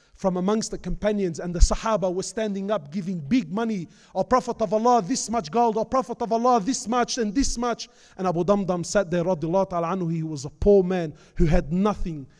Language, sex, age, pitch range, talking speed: English, male, 30-49, 185-260 Hz, 210 wpm